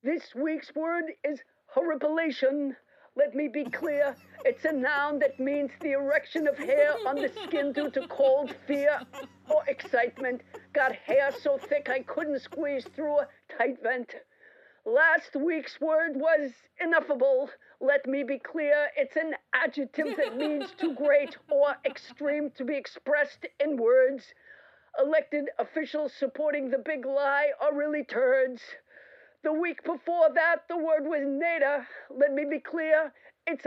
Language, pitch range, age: English, 275-310 Hz, 50-69